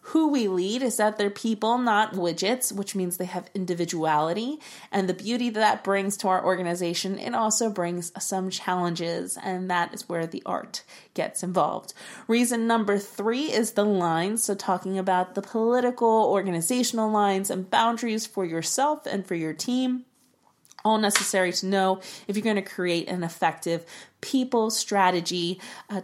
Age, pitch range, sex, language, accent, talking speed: 20-39, 175-220 Hz, female, English, American, 165 wpm